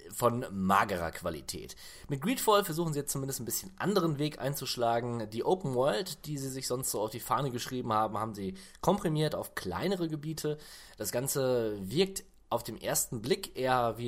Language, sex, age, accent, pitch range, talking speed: German, male, 20-39, German, 100-150 Hz, 180 wpm